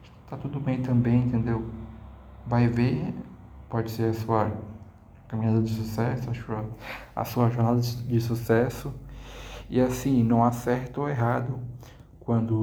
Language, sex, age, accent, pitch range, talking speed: Portuguese, male, 20-39, Brazilian, 115-125 Hz, 140 wpm